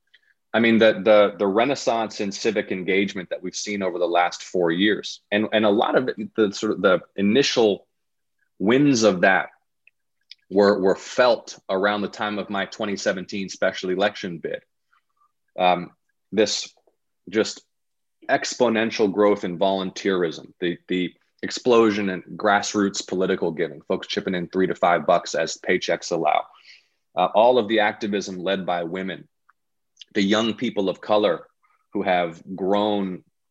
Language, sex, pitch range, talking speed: English, male, 95-115 Hz, 150 wpm